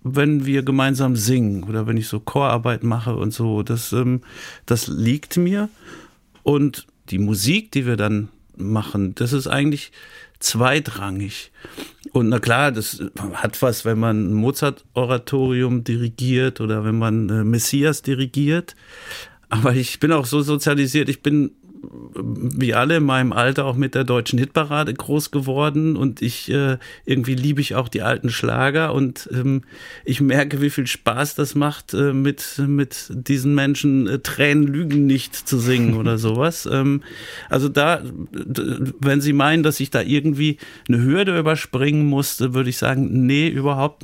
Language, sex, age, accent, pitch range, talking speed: German, male, 50-69, German, 120-145 Hz, 150 wpm